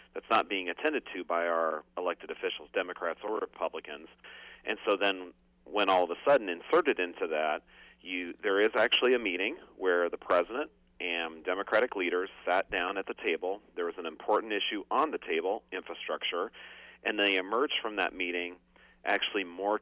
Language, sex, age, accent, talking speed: English, male, 40-59, American, 175 wpm